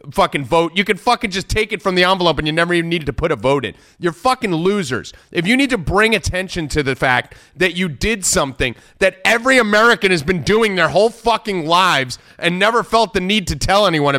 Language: English